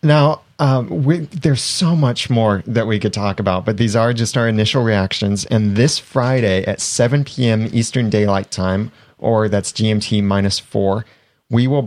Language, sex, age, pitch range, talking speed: English, male, 30-49, 105-130 Hz, 170 wpm